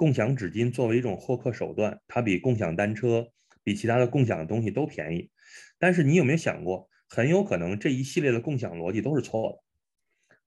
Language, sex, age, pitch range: Chinese, male, 20-39, 100-140 Hz